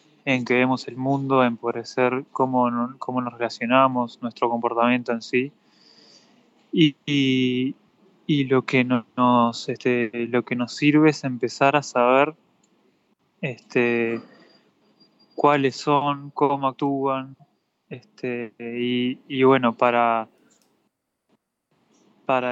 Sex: male